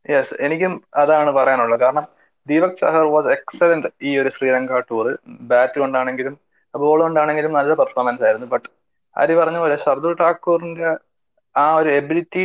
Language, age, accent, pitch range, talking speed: English, 20-39, Indian, 135-165 Hz, 105 wpm